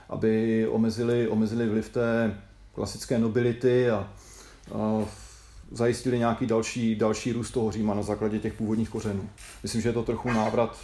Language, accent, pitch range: Czech, native, 110-120 Hz